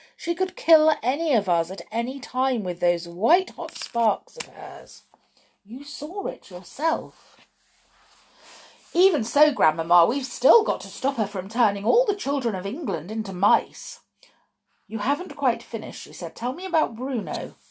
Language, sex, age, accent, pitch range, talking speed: English, female, 40-59, British, 175-275 Hz, 160 wpm